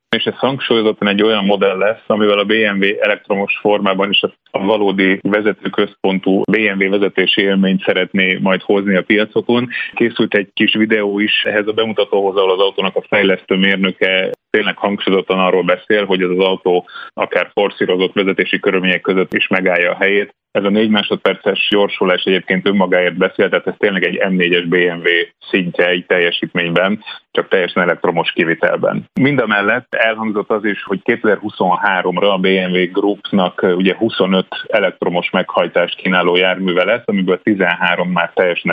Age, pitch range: 30-49, 95-105 Hz